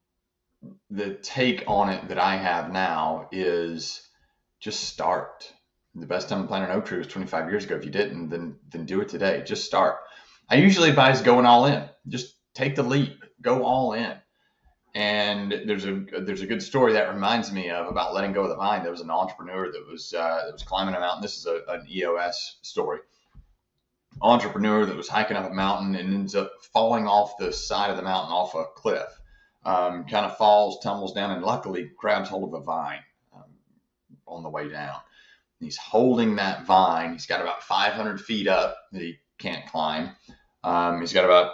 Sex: male